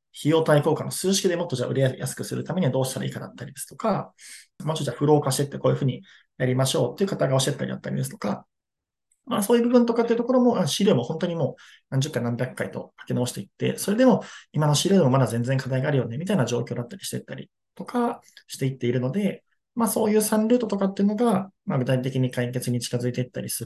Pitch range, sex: 125-185 Hz, male